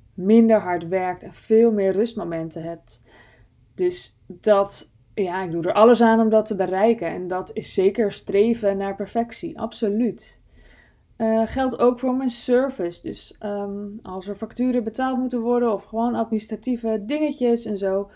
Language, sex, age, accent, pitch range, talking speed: Dutch, female, 20-39, Dutch, 195-230 Hz, 160 wpm